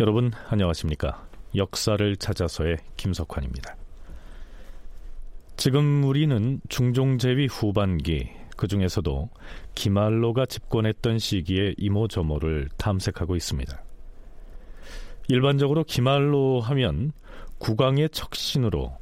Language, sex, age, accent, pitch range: Korean, male, 40-59, native, 85-130 Hz